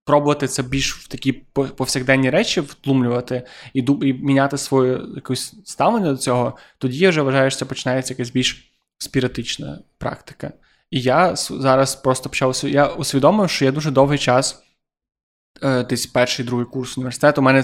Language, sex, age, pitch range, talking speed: Ukrainian, male, 20-39, 130-145 Hz, 155 wpm